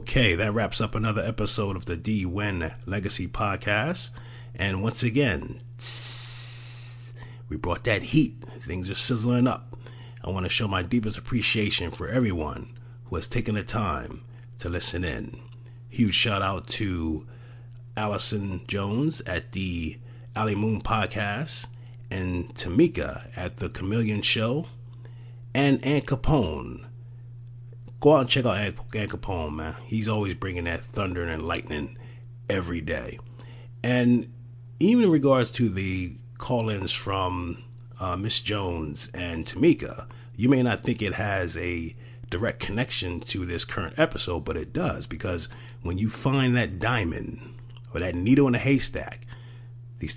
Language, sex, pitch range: English, male, 100-120 Hz